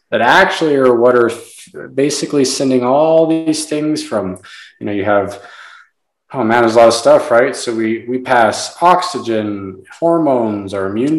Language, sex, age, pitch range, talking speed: English, male, 20-39, 120-155 Hz, 165 wpm